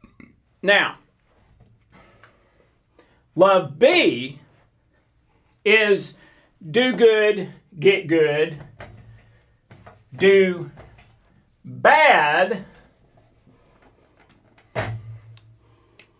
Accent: American